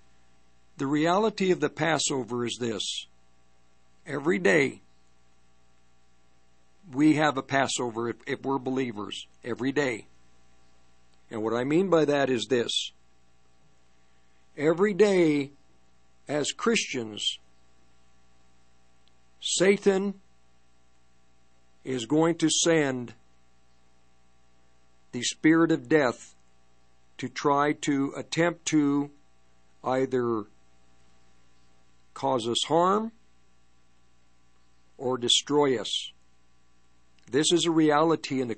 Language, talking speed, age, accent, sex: English, 90 wpm, 60-79, American, male